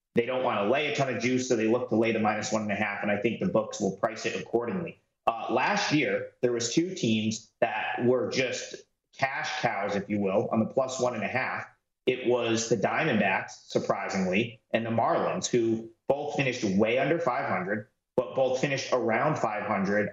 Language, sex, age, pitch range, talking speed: English, male, 30-49, 115-145 Hz, 210 wpm